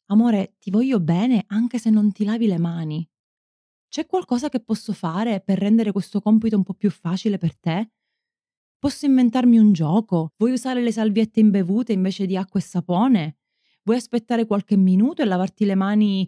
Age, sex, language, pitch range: 20-39, female, Italian, 185-225 Hz